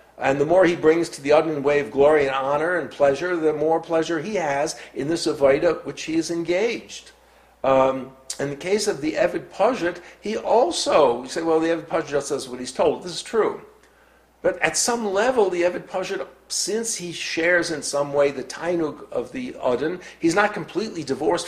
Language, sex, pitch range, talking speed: English, male, 140-185 Hz, 205 wpm